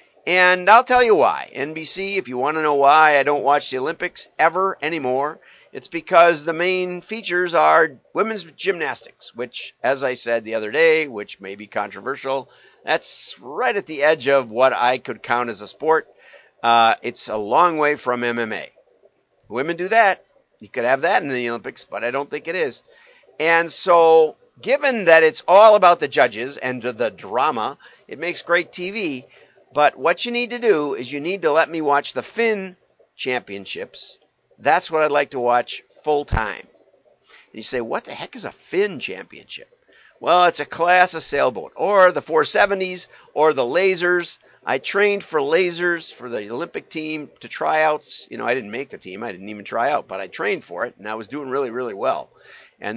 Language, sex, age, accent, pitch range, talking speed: English, male, 50-69, American, 135-190 Hz, 195 wpm